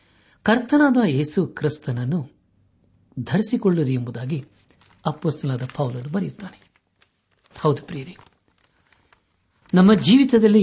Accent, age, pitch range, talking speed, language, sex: native, 60-79, 100-150 Hz, 55 wpm, Kannada, male